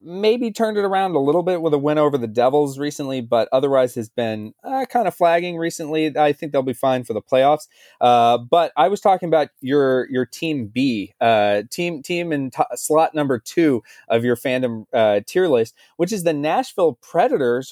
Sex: male